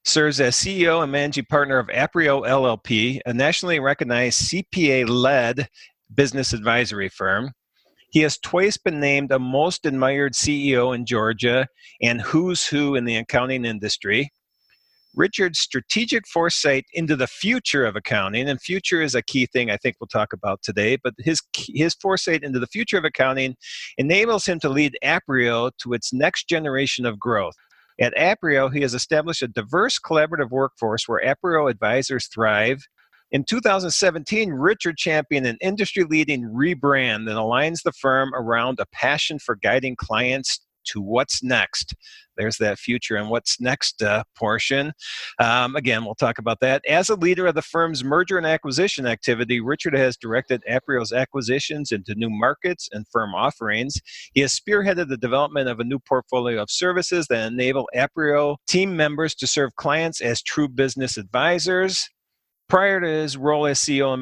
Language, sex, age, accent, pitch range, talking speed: English, male, 50-69, American, 125-160 Hz, 160 wpm